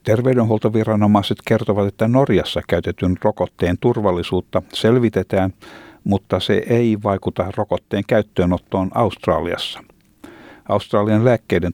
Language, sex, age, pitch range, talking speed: Finnish, male, 60-79, 90-110 Hz, 85 wpm